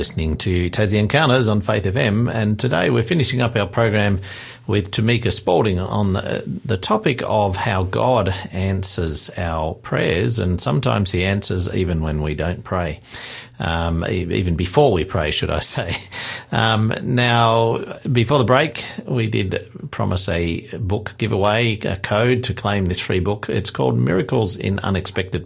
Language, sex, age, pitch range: English, male, 50-69, 95-120 Hz